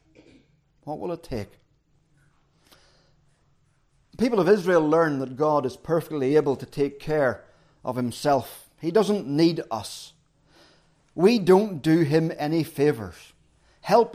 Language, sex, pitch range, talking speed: English, male, 140-175 Hz, 125 wpm